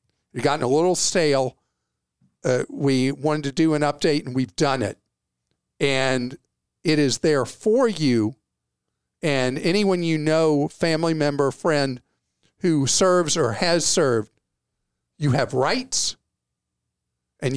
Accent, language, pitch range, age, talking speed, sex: American, English, 130-170 Hz, 50-69, 130 wpm, male